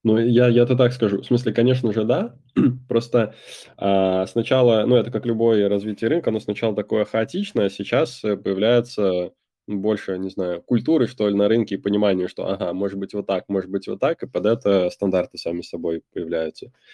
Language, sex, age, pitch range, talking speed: Russian, male, 20-39, 95-110 Hz, 185 wpm